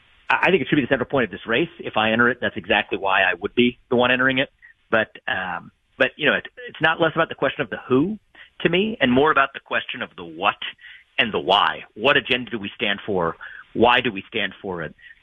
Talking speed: 255 wpm